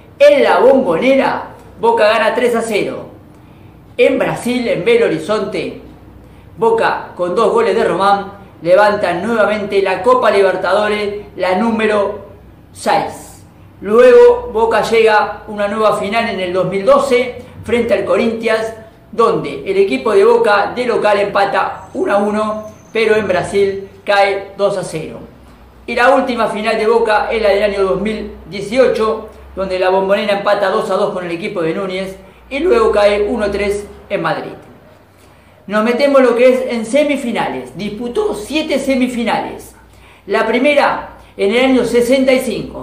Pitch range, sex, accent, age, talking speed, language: 200-245 Hz, female, Argentinian, 40-59, 145 wpm, Spanish